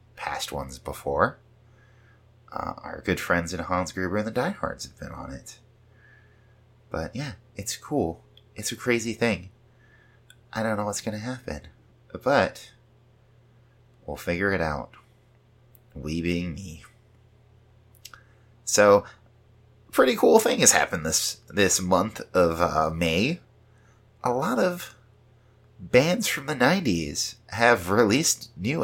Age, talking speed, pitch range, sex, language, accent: 30-49, 130 wpm, 105-120 Hz, male, English, American